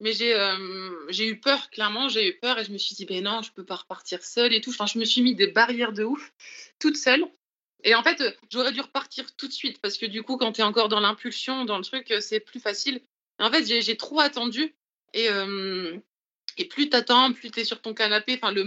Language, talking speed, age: French, 255 wpm, 20-39